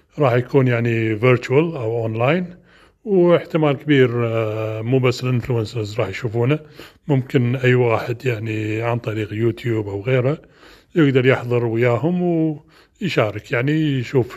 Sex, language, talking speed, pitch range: male, Arabic, 115 wpm, 125-165 Hz